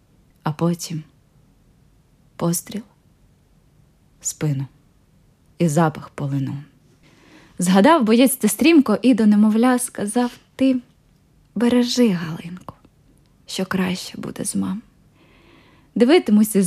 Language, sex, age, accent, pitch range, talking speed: Ukrainian, female, 20-39, native, 160-220 Hz, 85 wpm